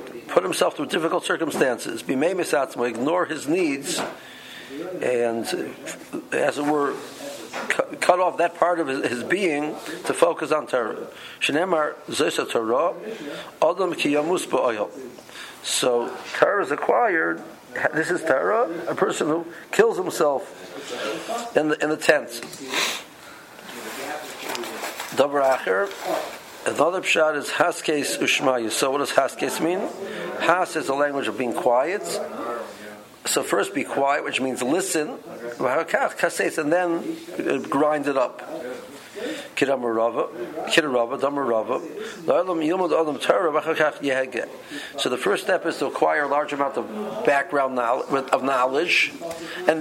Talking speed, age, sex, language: 105 wpm, 60-79, male, English